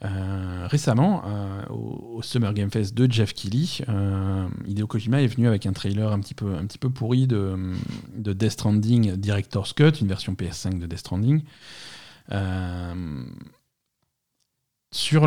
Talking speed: 155 wpm